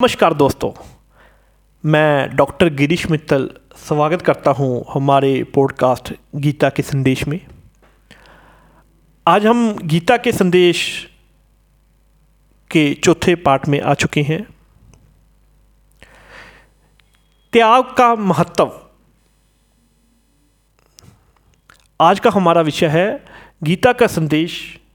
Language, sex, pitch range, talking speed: Hindi, male, 145-190 Hz, 90 wpm